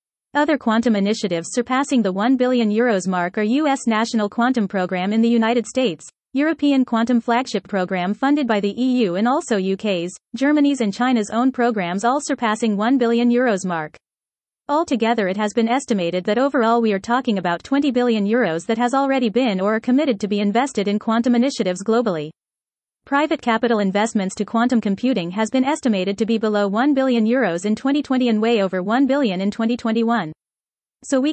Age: 30-49